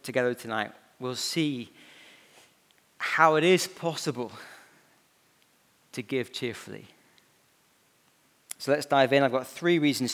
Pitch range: 125-165 Hz